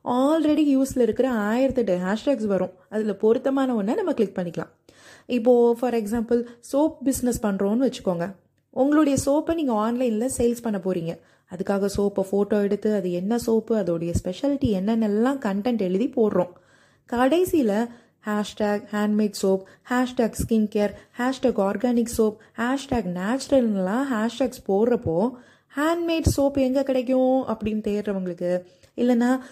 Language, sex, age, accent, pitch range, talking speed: Tamil, female, 20-39, native, 205-270 Hz, 110 wpm